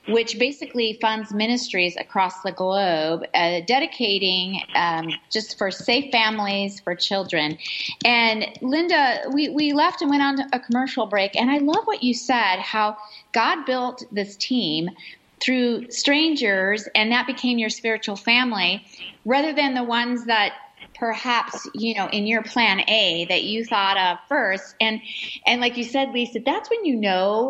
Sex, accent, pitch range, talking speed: female, American, 195-250 Hz, 160 wpm